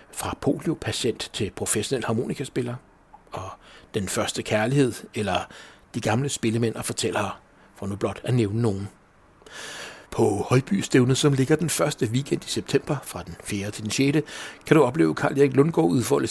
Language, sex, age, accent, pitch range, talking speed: English, male, 60-79, Danish, 110-135 Hz, 160 wpm